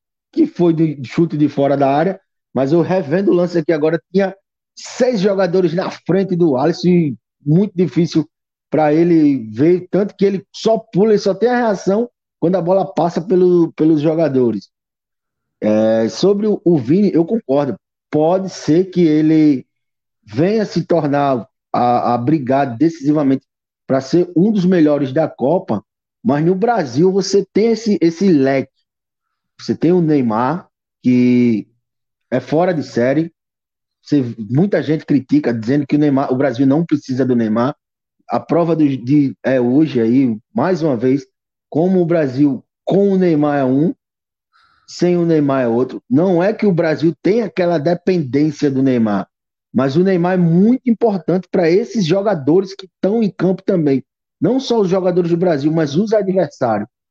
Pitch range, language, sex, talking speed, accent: 140-185 Hz, Portuguese, male, 165 wpm, Brazilian